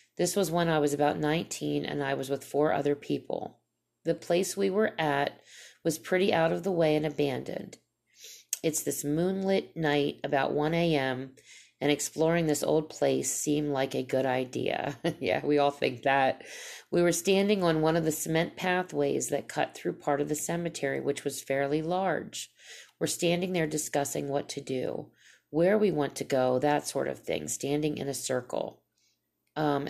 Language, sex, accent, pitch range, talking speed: English, female, American, 145-170 Hz, 180 wpm